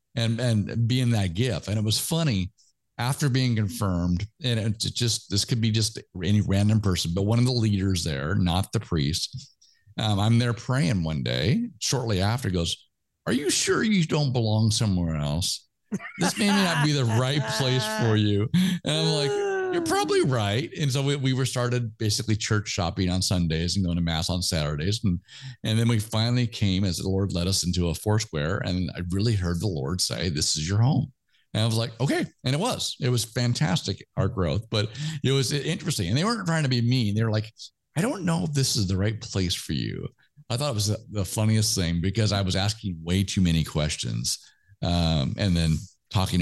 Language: English